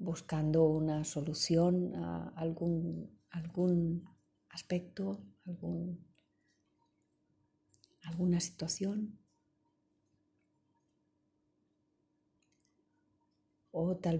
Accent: Spanish